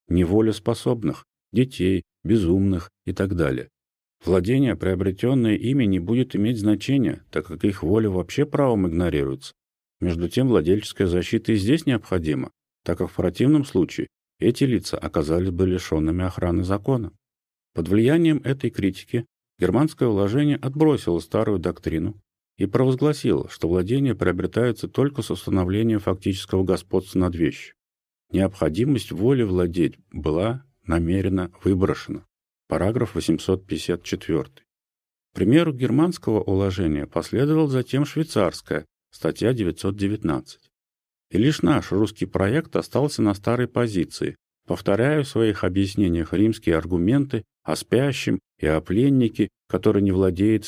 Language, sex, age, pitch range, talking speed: Russian, male, 40-59, 90-115 Hz, 120 wpm